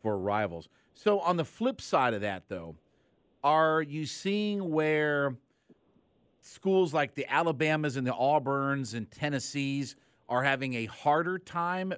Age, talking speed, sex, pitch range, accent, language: 50-69, 140 wpm, male, 130-165 Hz, American, English